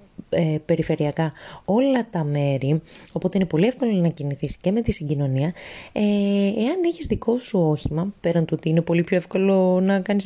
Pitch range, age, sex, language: 155-200 Hz, 20-39, female, Greek